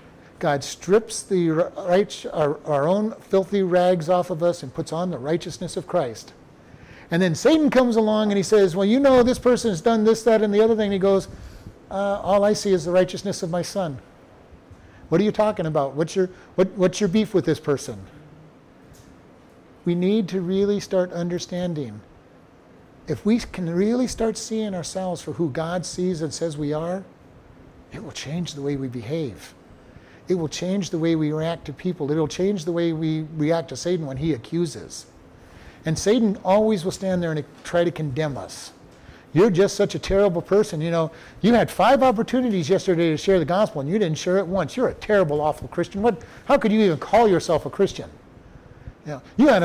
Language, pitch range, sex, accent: English, 155-200 Hz, male, American